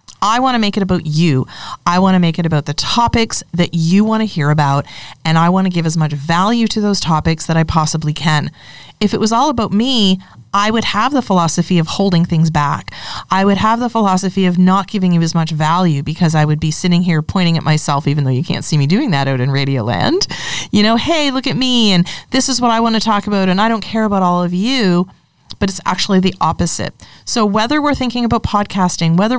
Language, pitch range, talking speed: English, 155-210 Hz, 245 wpm